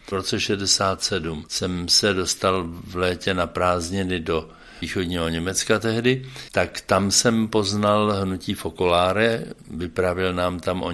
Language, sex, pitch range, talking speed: Czech, male, 90-105 Hz, 130 wpm